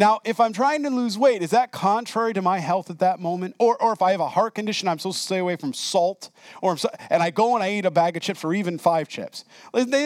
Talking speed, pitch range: 285 wpm, 165-235 Hz